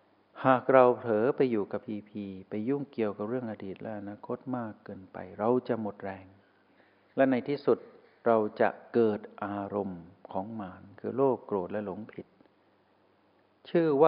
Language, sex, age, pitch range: Thai, male, 60-79, 100-125 Hz